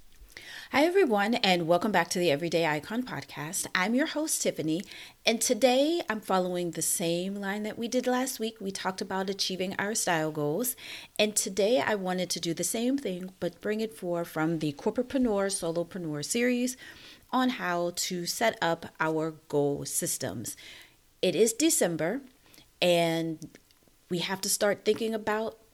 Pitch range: 160-220 Hz